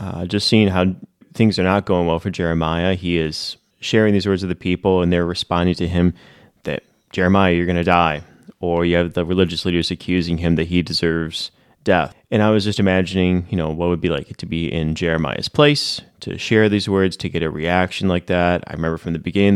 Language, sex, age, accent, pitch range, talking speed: English, male, 30-49, American, 80-95 Hz, 225 wpm